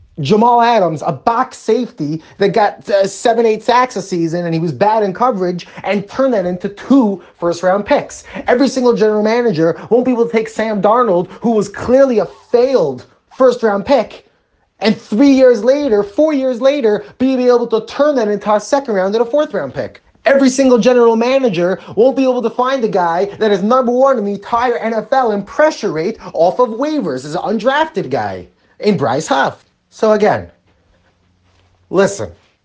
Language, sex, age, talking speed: English, male, 30-49, 185 wpm